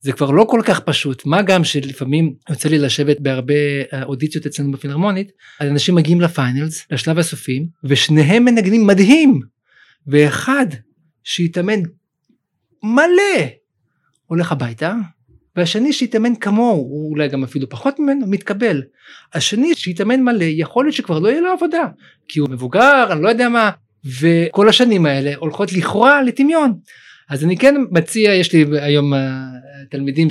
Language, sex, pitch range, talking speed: Hebrew, male, 145-205 Hz, 135 wpm